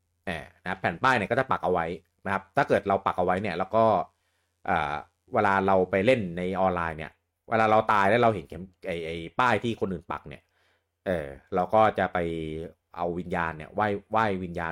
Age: 30-49